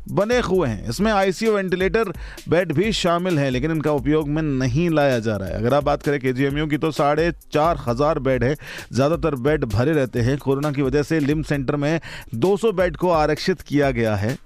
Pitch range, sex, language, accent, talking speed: 110-145 Hz, male, Hindi, native, 210 wpm